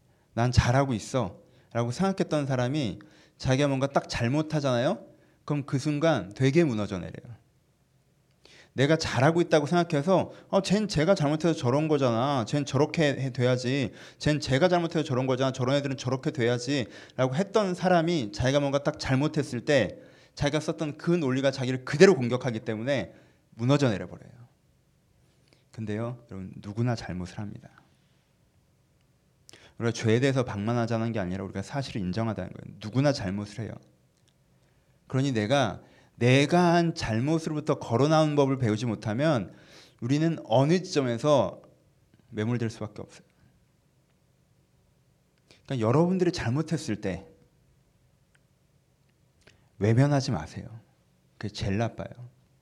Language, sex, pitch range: Korean, male, 115-150 Hz